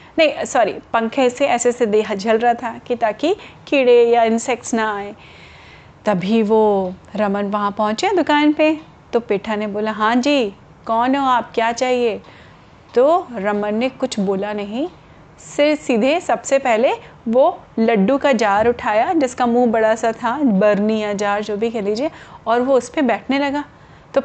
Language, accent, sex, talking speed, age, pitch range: Hindi, native, female, 170 wpm, 30-49, 220-295 Hz